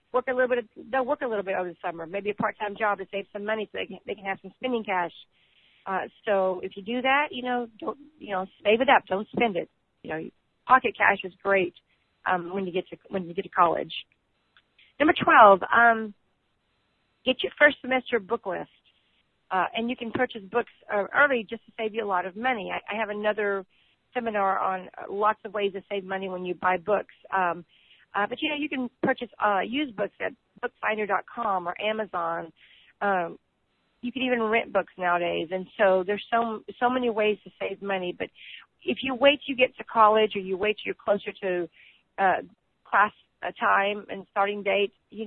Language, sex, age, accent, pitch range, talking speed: English, female, 40-59, American, 190-235 Hz, 210 wpm